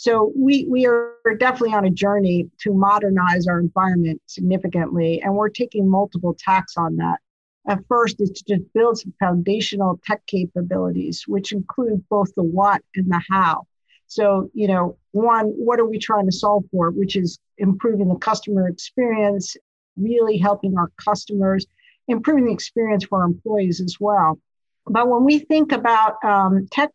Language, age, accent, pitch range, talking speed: English, 50-69, American, 185-225 Hz, 165 wpm